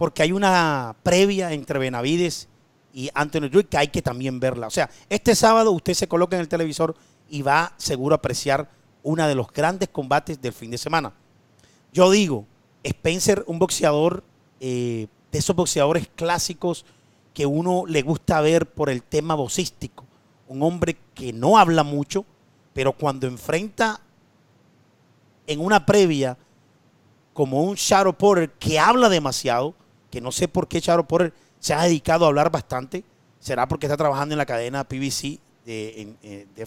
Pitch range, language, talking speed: 135-185 Hz, Spanish, 160 wpm